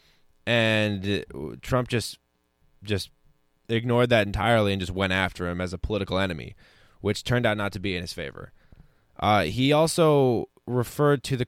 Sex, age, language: male, 20-39, English